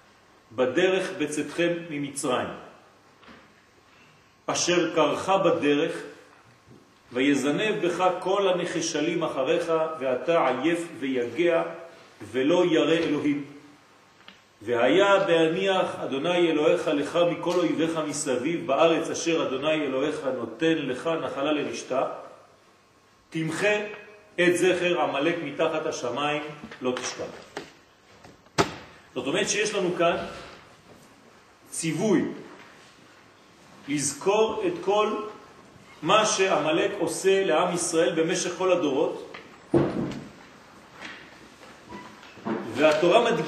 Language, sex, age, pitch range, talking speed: French, male, 40-59, 155-195 Hz, 80 wpm